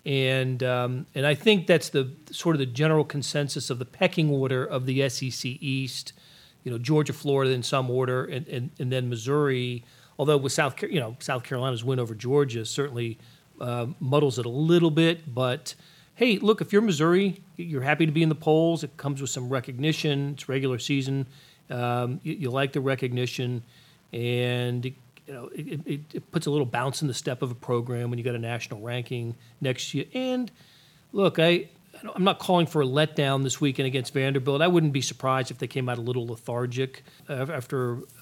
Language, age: English, 40-59